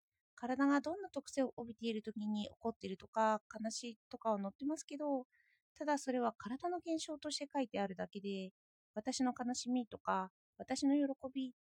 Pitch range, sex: 220-290 Hz, female